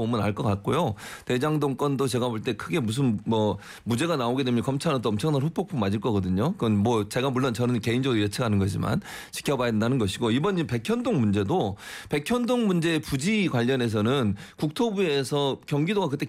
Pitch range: 115-155 Hz